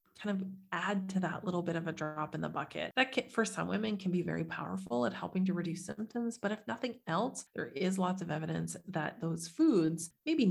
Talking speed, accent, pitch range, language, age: 230 wpm, American, 165-195 Hz, English, 30-49